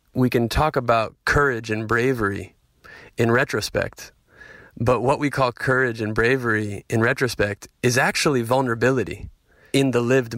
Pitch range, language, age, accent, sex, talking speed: 110-130 Hz, English, 20-39, American, male, 140 wpm